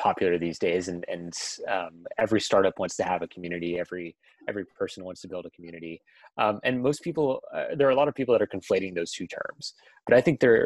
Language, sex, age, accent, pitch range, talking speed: English, male, 30-49, American, 95-125 Hz, 235 wpm